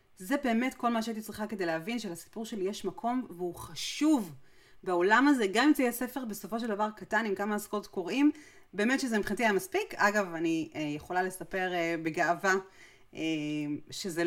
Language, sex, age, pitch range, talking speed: Hebrew, female, 30-49, 185-250 Hz, 165 wpm